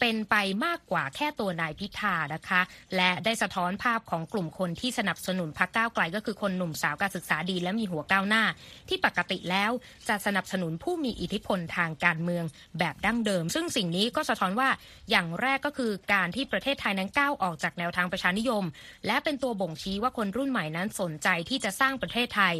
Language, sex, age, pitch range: Thai, female, 20-39, 180-235 Hz